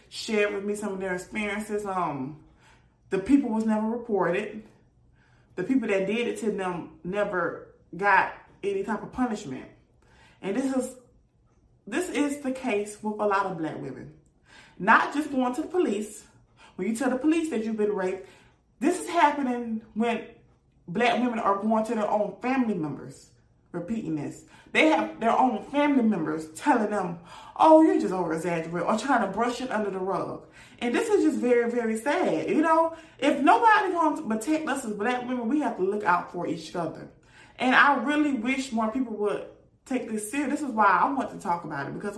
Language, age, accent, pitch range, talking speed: English, 30-49, American, 205-290 Hz, 195 wpm